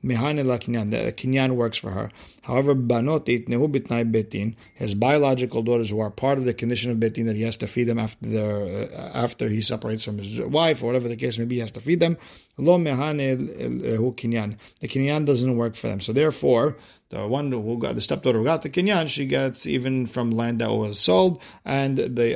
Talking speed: 195 wpm